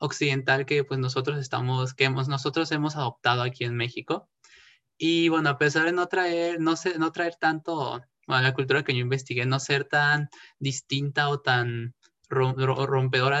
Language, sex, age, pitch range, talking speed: Spanish, male, 20-39, 130-155 Hz, 175 wpm